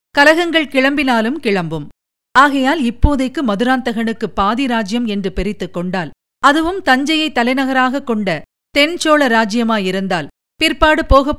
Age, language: 50-69, Tamil